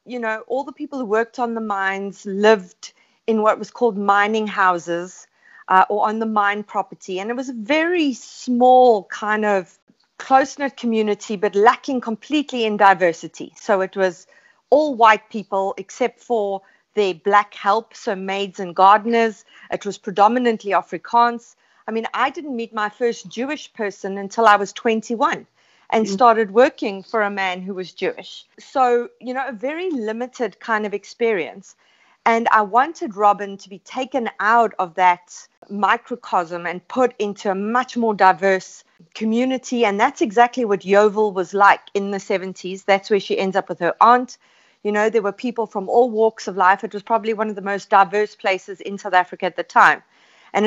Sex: female